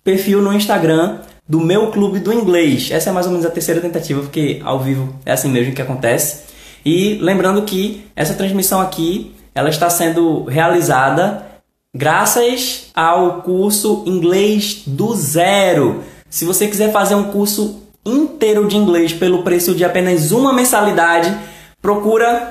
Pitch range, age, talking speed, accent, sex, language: 160-205 Hz, 20-39, 150 wpm, Brazilian, male, Portuguese